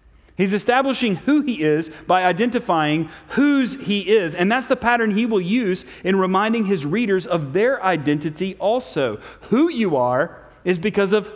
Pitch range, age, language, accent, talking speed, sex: 155-215 Hz, 30-49, English, American, 165 wpm, male